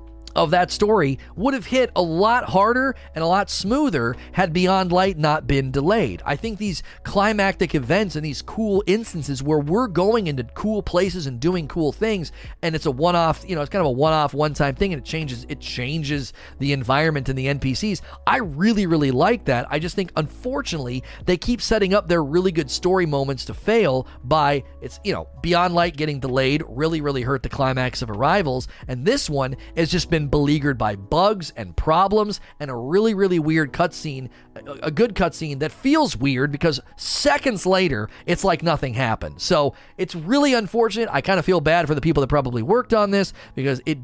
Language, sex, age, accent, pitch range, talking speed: English, male, 30-49, American, 135-190 Hz, 200 wpm